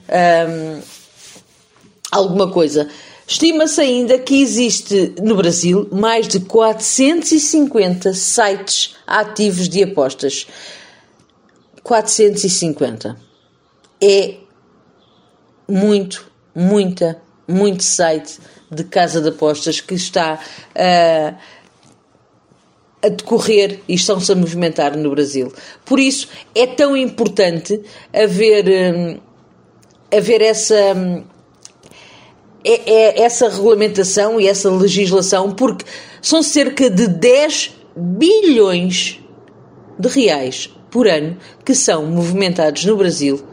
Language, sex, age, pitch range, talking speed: Portuguese, female, 40-59, 165-215 Hz, 90 wpm